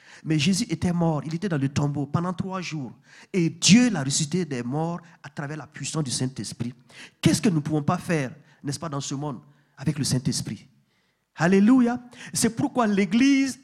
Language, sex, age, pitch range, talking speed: French, male, 40-59, 155-230 Hz, 190 wpm